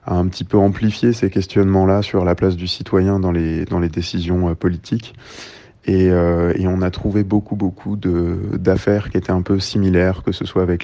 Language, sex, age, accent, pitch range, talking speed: French, male, 20-39, French, 90-100 Hz, 205 wpm